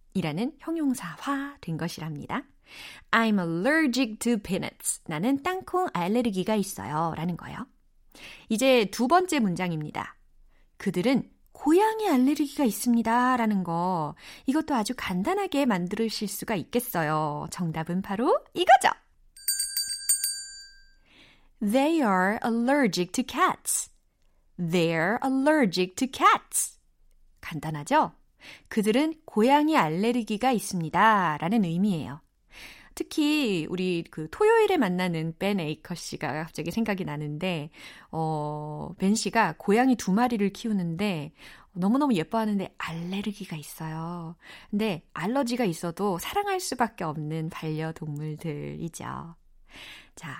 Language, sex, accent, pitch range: Korean, female, native, 175-275 Hz